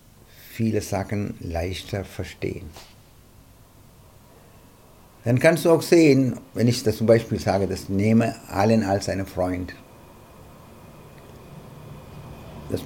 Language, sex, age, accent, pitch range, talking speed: German, male, 60-79, Indian, 100-130 Hz, 105 wpm